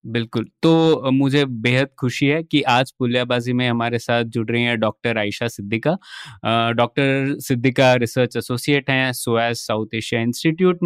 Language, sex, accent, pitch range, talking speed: Hindi, male, native, 120-150 Hz, 140 wpm